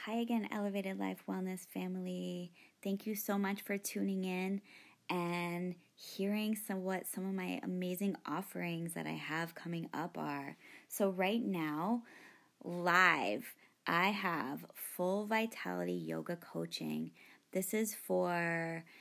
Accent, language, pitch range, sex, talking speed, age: American, English, 150-195 Hz, female, 130 wpm, 20-39